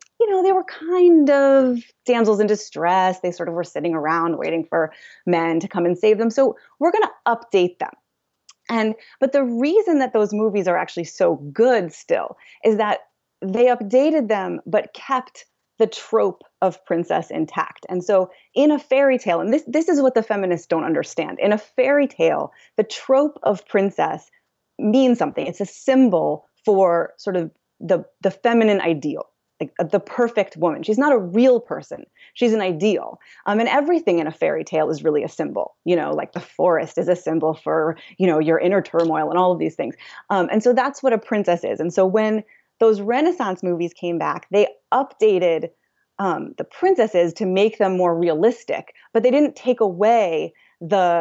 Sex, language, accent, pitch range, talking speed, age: female, English, American, 175-255 Hz, 190 wpm, 20-39